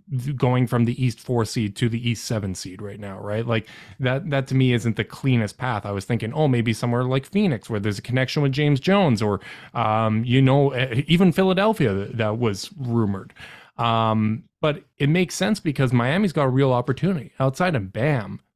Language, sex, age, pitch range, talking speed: English, male, 20-39, 115-145 Hz, 195 wpm